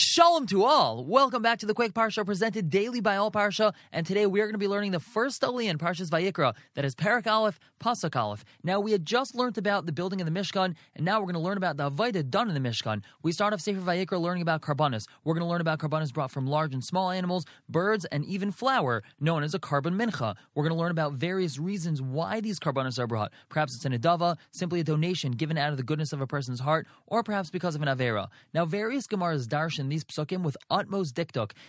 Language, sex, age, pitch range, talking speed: English, male, 20-39, 150-195 Hz, 245 wpm